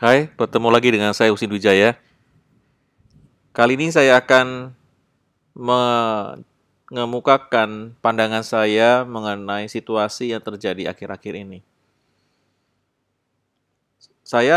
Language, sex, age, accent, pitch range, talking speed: Indonesian, male, 20-39, native, 110-130 Hz, 85 wpm